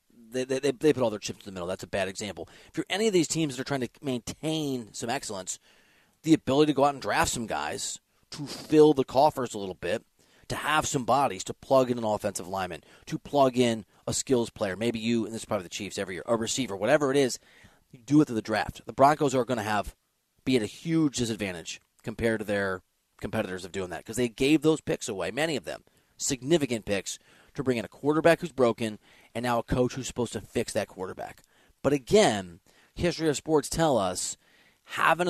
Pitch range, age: 110-145 Hz, 30-49